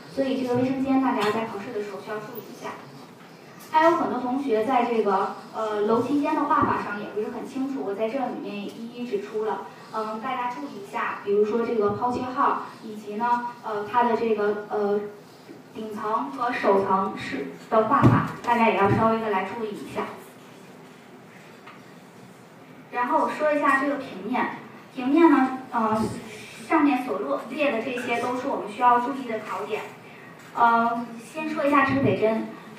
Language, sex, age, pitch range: Chinese, female, 20-39, 210-250 Hz